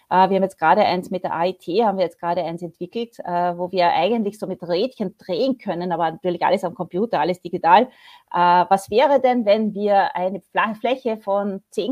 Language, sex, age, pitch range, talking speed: German, female, 30-49, 185-235 Hz, 190 wpm